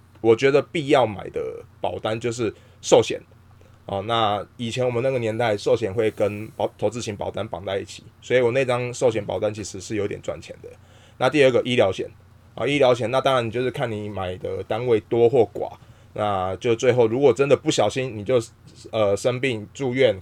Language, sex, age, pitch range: Chinese, male, 20-39, 105-135 Hz